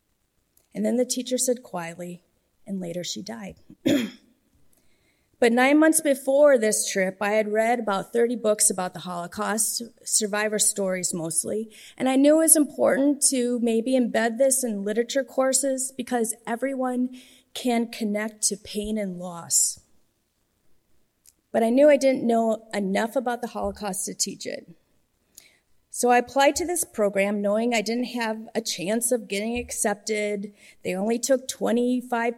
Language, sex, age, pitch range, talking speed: English, female, 30-49, 200-250 Hz, 150 wpm